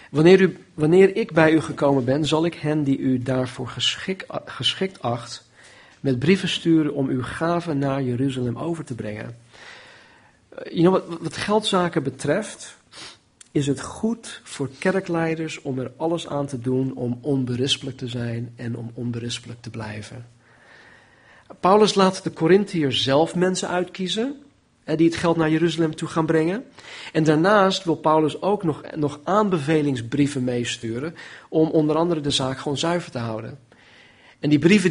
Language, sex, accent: Dutch, male, Dutch